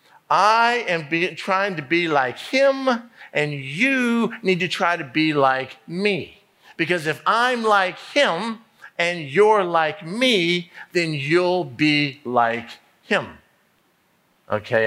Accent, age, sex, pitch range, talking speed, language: American, 50-69, male, 130-180 Hz, 125 wpm, English